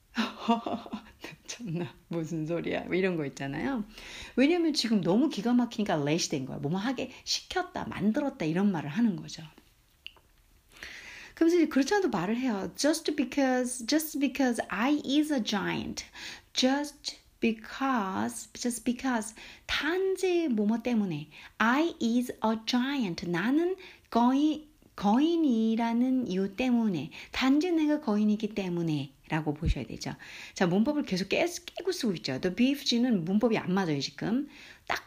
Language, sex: Korean, female